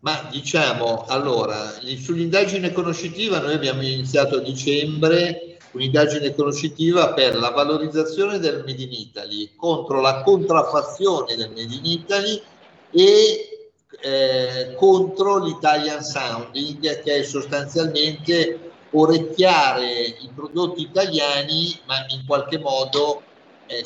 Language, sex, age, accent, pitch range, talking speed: Italian, male, 50-69, native, 130-165 Hz, 110 wpm